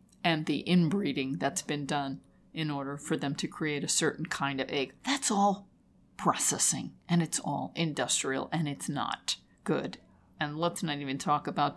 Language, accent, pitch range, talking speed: English, American, 145-200 Hz, 175 wpm